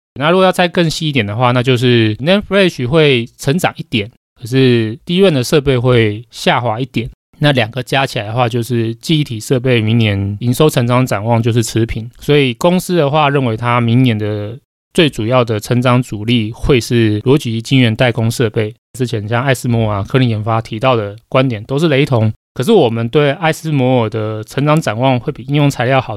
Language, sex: Chinese, male